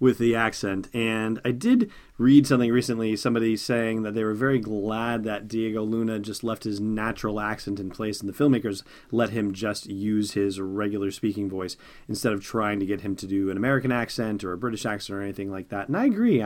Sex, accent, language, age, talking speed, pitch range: male, American, English, 30-49, 215 wpm, 100-125 Hz